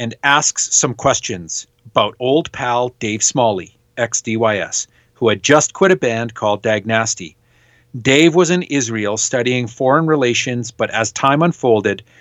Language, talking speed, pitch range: English, 145 wpm, 115-145 Hz